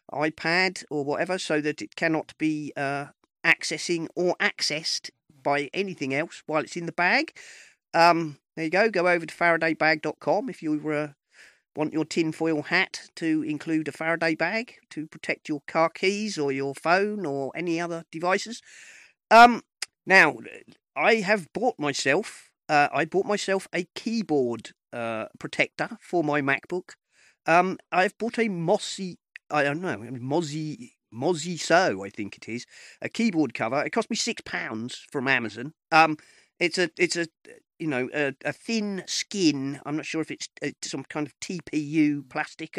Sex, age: male, 40-59